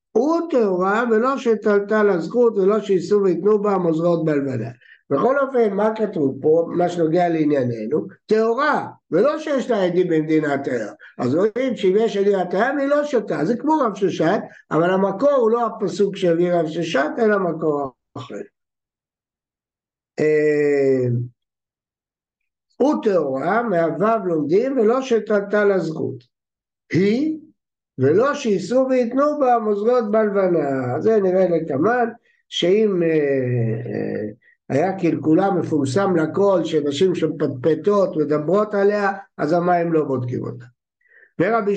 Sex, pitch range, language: male, 155-225 Hz, Hebrew